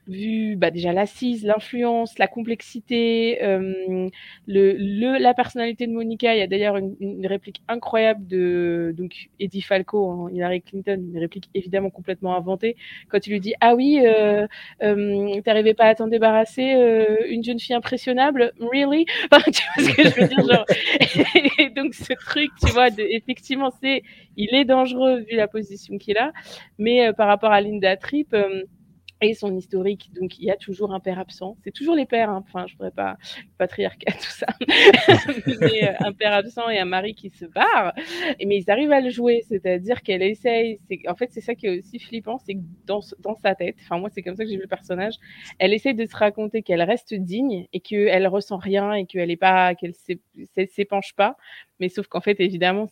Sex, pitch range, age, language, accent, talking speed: female, 190-230 Hz, 20-39, French, French, 205 wpm